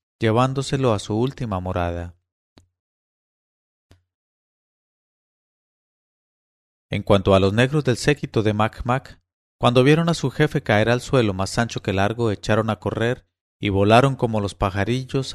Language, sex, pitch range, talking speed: English, male, 95-125 Hz, 135 wpm